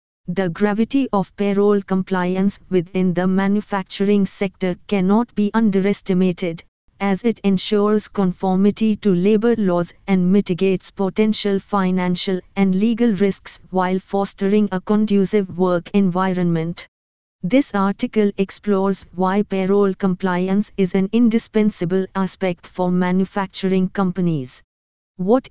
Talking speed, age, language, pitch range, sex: 110 wpm, 20-39, English, 185-210 Hz, female